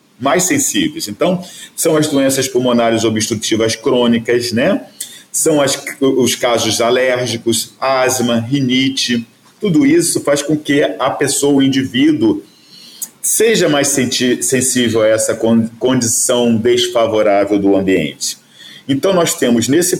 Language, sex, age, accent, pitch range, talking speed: Portuguese, male, 40-59, Brazilian, 110-145 Hz, 125 wpm